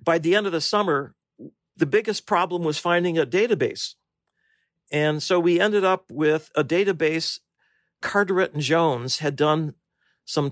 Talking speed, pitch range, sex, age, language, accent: 155 wpm, 145-170 Hz, male, 50-69, English, American